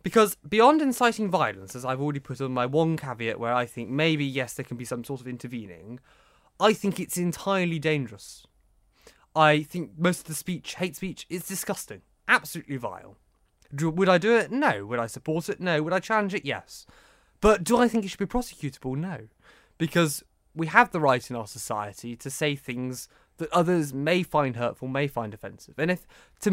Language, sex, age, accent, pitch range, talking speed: English, male, 20-39, British, 125-185 Hz, 195 wpm